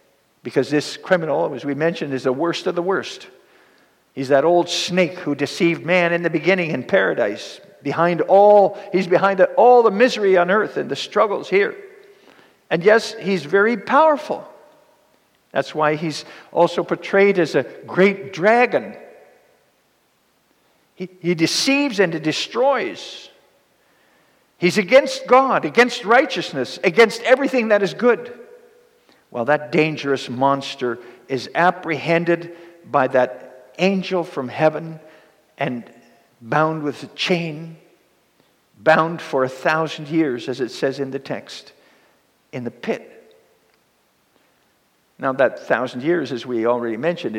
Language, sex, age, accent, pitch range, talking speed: English, male, 50-69, American, 145-200 Hz, 135 wpm